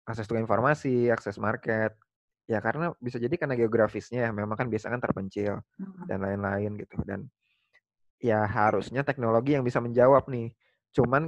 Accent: native